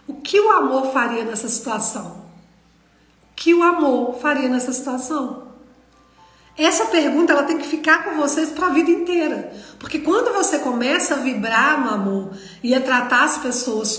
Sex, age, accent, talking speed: female, 40-59, Brazilian, 165 wpm